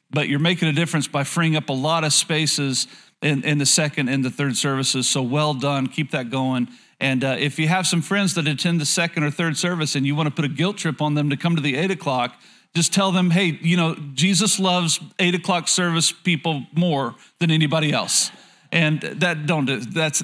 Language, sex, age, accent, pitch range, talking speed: English, male, 40-59, American, 145-180 Hz, 230 wpm